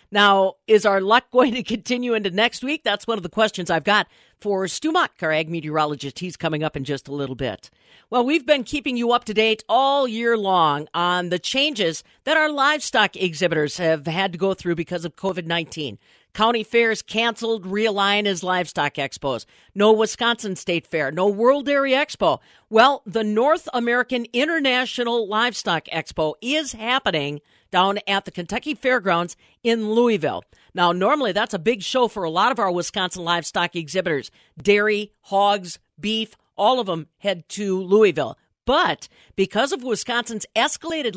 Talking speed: 170 wpm